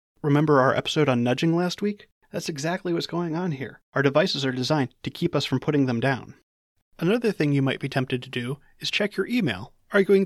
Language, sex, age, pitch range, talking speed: English, male, 30-49, 140-185 Hz, 215 wpm